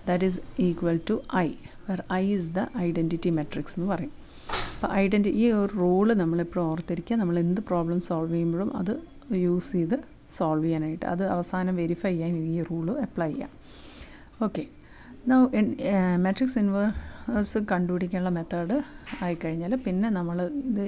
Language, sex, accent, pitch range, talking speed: Malayalam, female, native, 180-215 Hz, 135 wpm